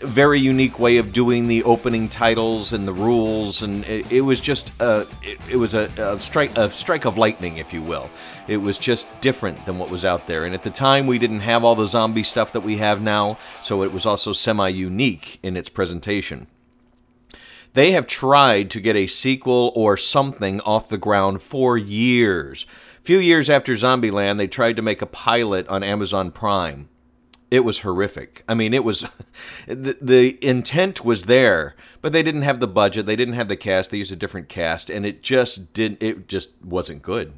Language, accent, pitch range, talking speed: English, American, 100-125 Hz, 200 wpm